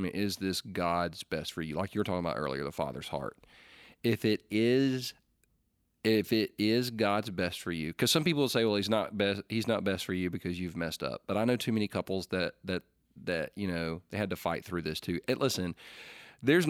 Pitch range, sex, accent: 90-115 Hz, male, American